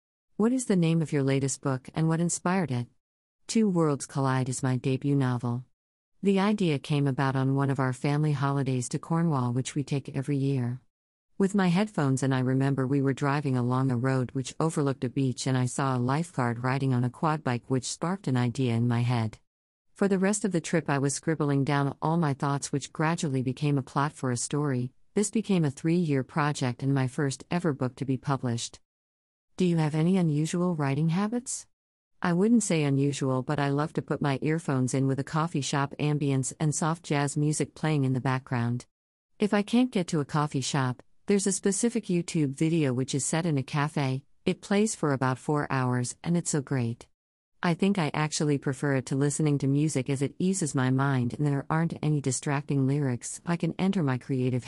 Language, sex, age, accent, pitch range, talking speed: English, female, 50-69, American, 130-160 Hz, 210 wpm